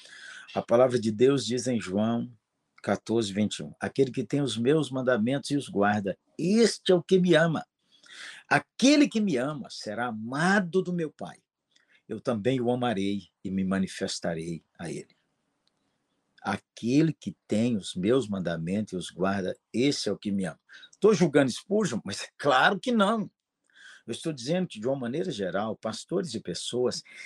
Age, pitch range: 50-69, 110-175 Hz